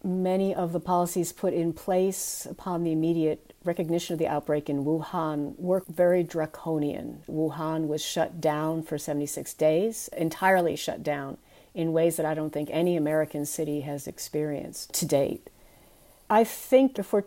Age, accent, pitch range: 50-69, American, 155-200 Hz